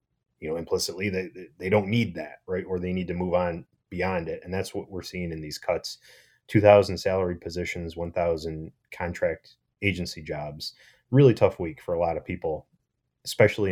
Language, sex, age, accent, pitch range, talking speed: English, male, 30-49, American, 85-105 Hz, 180 wpm